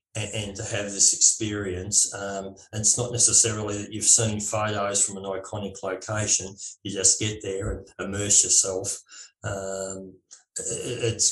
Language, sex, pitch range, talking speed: English, male, 100-120 Hz, 145 wpm